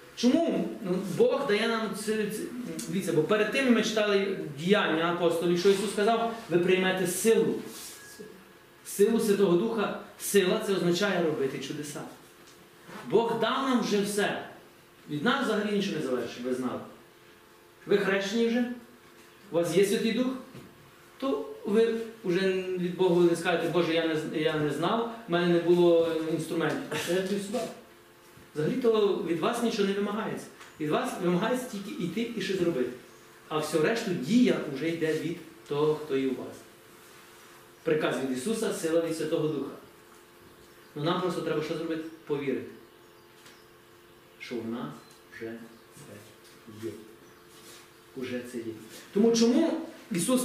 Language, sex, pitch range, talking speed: Ukrainian, male, 160-220 Hz, 145 wpm